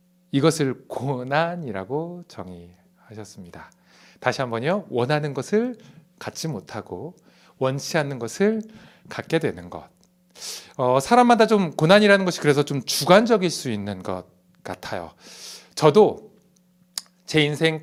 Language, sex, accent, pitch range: Korean, male, native, 125-180 Hz